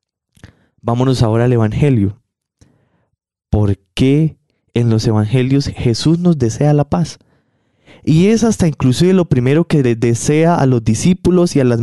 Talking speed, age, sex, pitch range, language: 140 wpm, 20-39, male, 115-145 Hz, Spanish